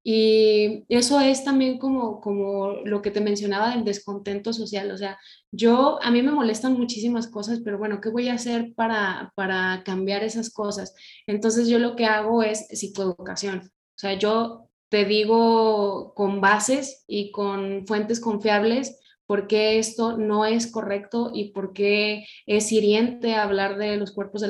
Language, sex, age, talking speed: Spanish, female, 20-39, 165 wpm